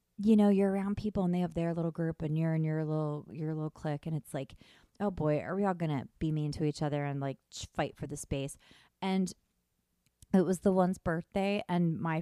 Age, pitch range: 30-49, 150-190 Hz